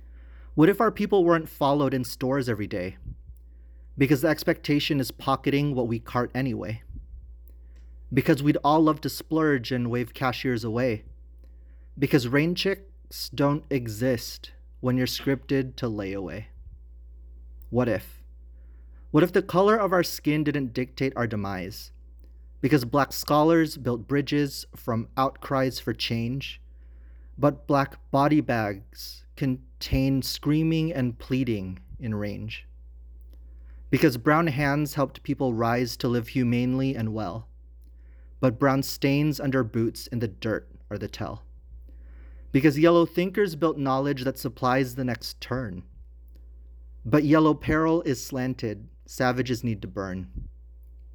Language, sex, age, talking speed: English, male, 30-49, 135 wpm